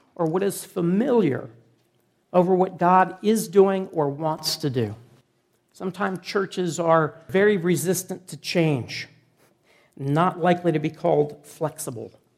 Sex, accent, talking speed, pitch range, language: male, American, 125 wpm, 150-190 Hz, English